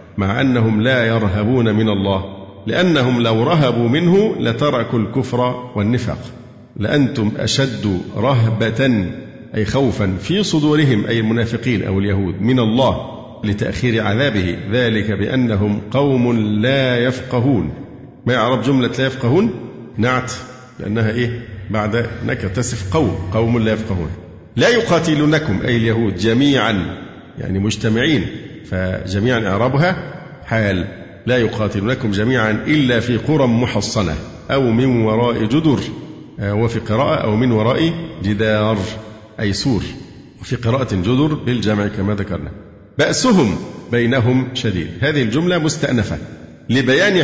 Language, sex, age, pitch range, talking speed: Arabic, male, 50-69, 105-130 Hz, 115 wpm